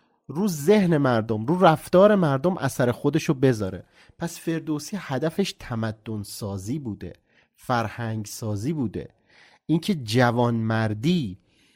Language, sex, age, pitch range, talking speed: Persian, male, 30-49, 110-155 Hz, 105 wpm